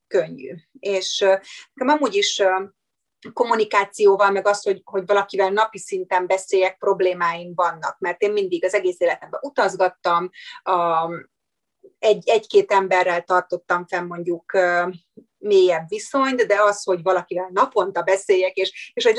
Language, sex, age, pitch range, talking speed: Hungarian, female, 30-49, 180-205 Hz, 120 wpm